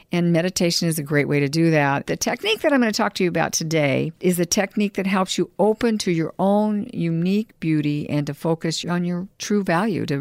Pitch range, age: 145-195 Hz, 60-79